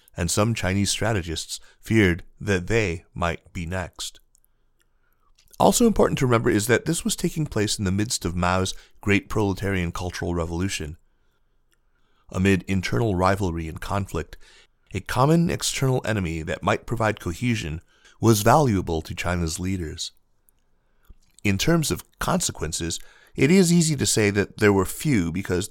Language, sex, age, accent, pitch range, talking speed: English, male, 30-49, American, 85-105 Hz, 140 wpm